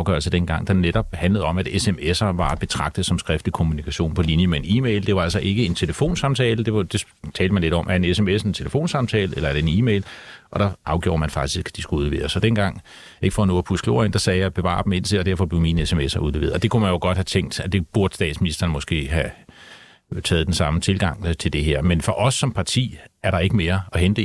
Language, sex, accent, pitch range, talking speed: Danish, male, native, 85-110 Hz, 250 wpm